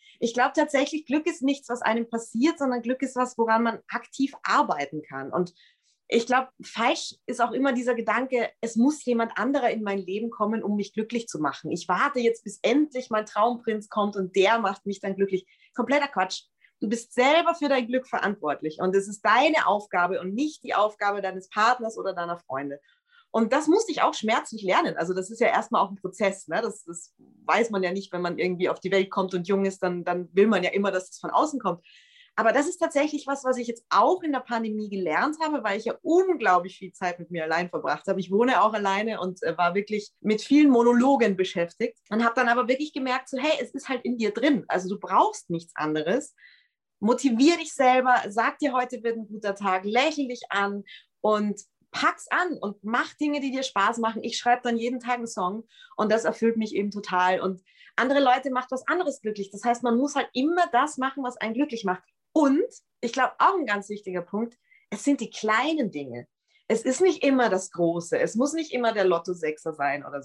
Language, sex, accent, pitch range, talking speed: German, female, German, 195-260 Hz, 220 wpm